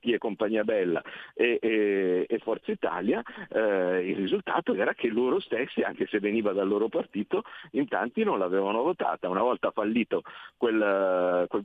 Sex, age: male, 50-69